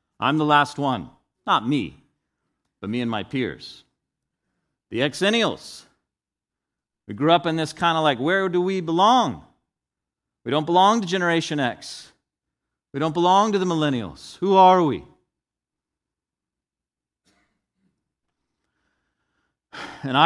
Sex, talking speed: male, 120 wpm